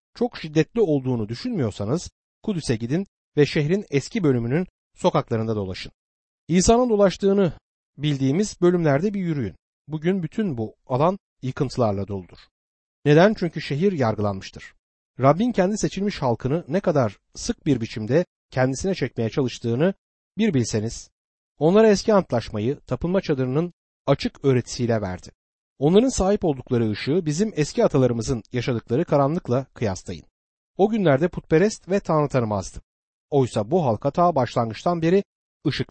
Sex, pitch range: male, 115-180 Hz